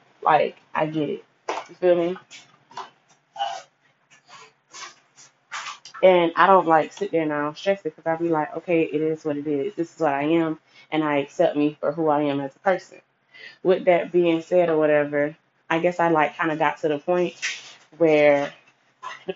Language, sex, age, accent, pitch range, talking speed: English, female, 20-39, American, 155-200 Hz, 190 wpm